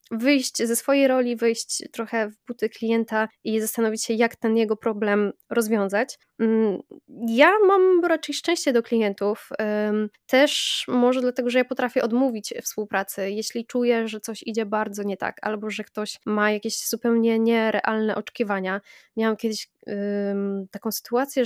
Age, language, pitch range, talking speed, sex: 20-39, Polish, 220-255 Hz, 145 wpm, female